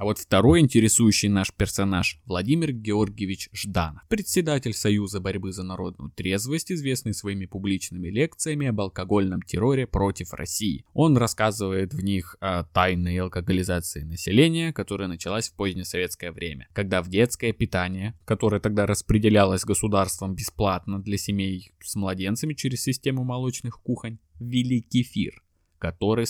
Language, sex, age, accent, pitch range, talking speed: Russian, male, 20-39, native, 95-115 Hz, 130 wpm